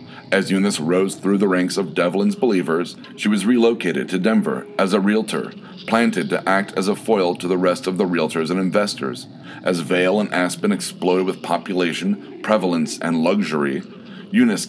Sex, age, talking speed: male, 40-59, 170 wpm